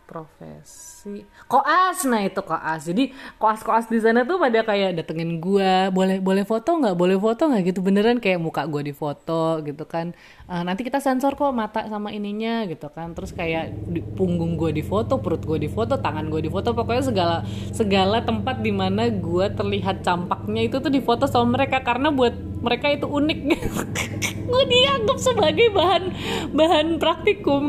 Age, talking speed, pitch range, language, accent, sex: 20-39, 160 wpm, 155-210 Hz, Indonesian, native, female